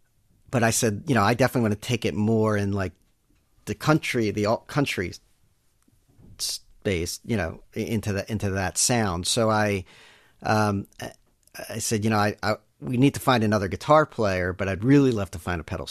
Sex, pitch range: male, 100-115 Hz